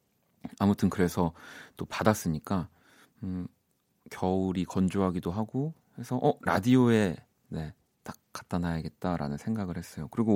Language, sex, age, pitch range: Korean, male, 30-49, 90-125 Hz